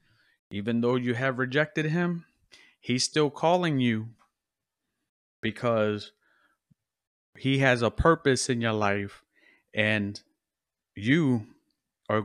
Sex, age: male, 30-49